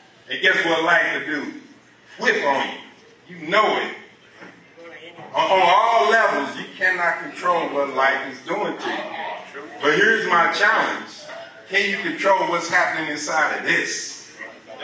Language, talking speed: English, 145 wpm